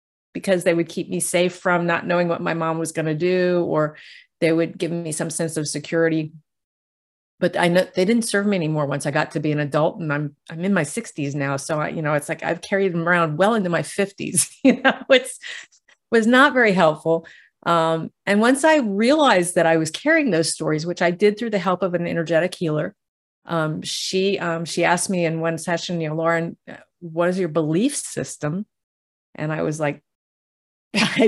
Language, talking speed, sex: English, 215 wpm, female